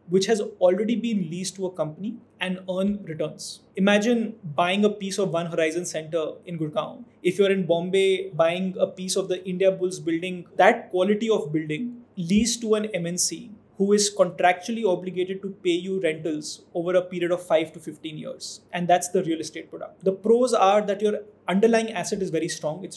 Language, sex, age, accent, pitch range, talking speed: English, male, 20-39, Indian, 175-210 Hz, 195 wpm